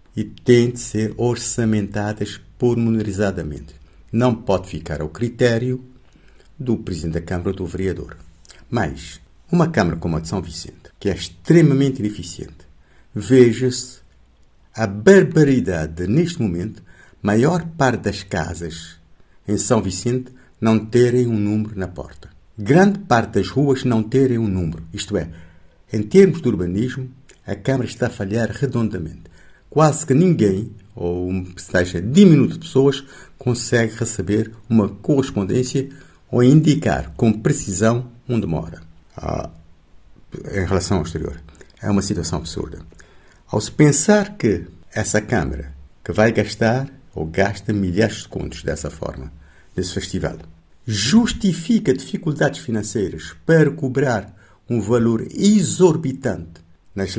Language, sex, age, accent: Portuguese, male, 60-79, Brazilian